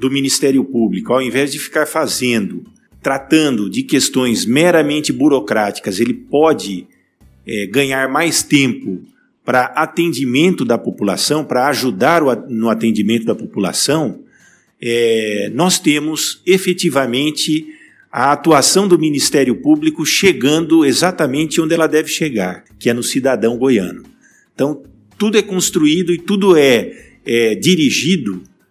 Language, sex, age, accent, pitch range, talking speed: Portuguese, male, 50-69, Brazilian, 115-160 Hz, 115 wpm